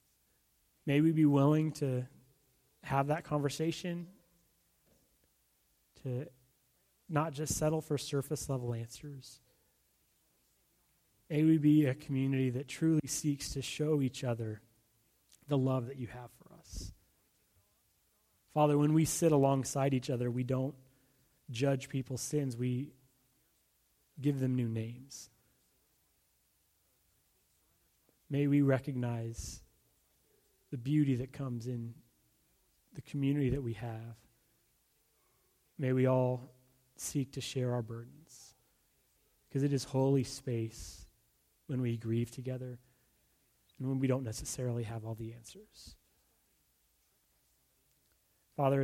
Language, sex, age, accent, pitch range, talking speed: English, male, 30-49, American, 115-145 Hz, 110 wpm